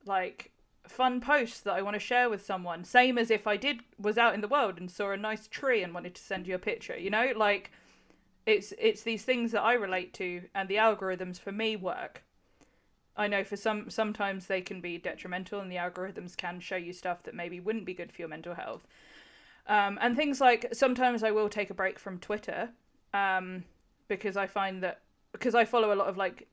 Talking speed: 220 wpm